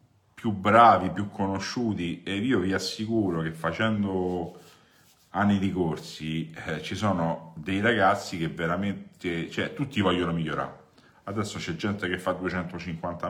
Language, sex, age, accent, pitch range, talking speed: Italian, male, 50-69, native, 90-120 Hz, 130 wpm